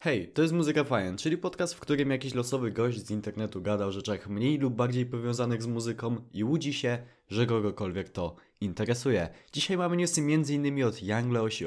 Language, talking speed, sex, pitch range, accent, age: Polish, 190 wpm, male, 105-135 Hz, native, 20-39